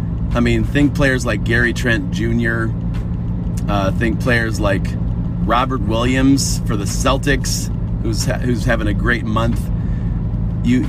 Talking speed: 140 wpm